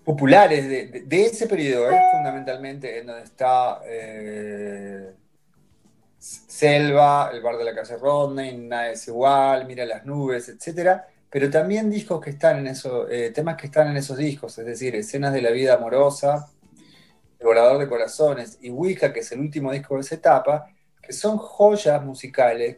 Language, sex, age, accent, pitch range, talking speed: Spanish, male, 30-49, Argentinian, 130-165 Hz, 170 wpm